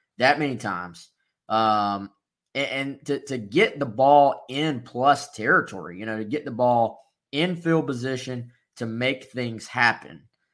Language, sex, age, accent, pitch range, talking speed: English, male, 20-39, American, 110-145 Hz, 155 wpm